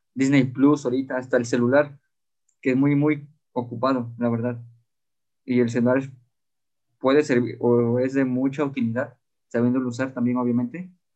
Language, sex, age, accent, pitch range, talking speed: Spanish, male, 20-39, Mexican, 120-140 Hz, 145 wpm